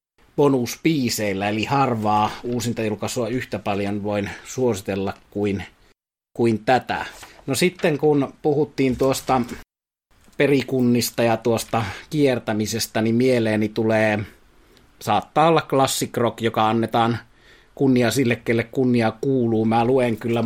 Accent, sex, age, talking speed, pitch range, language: native, male, 30-49, 110 wpm, 110-130 Hz, Finnish